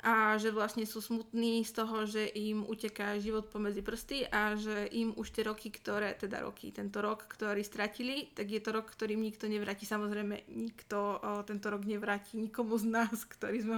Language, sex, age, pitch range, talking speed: Slovak, female, 20-39, 220-240 Hz, 190 wpm